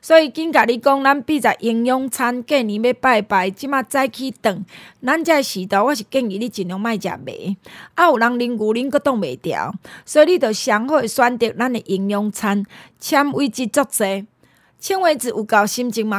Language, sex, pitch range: Chinese, female, 215-285 Hz